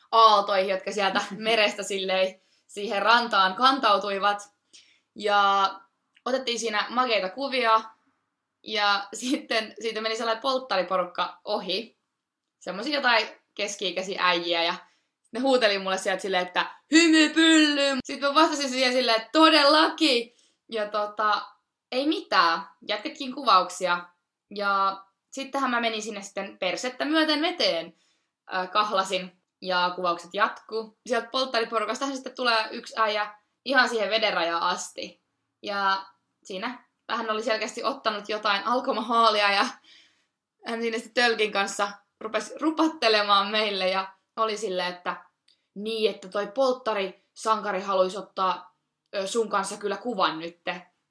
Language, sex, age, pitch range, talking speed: Finnish, female, 20-39, 190-235 Hz, 115 wpm